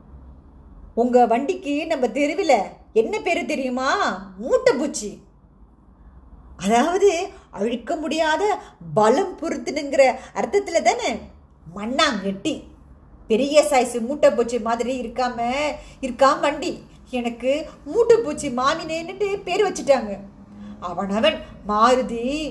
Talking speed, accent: 85 wpm, native